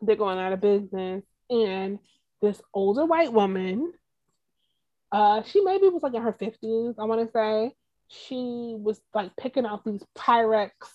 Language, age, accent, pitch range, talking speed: English, 20-39, American, 210-290 Hz, 160 wpm